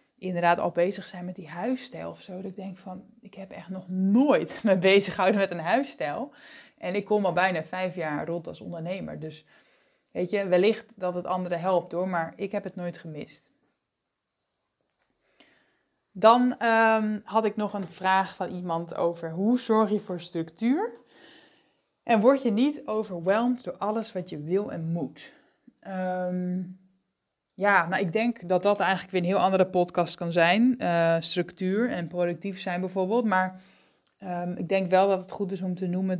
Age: 20-39